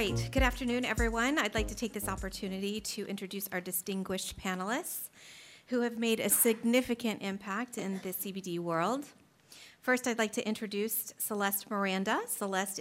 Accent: American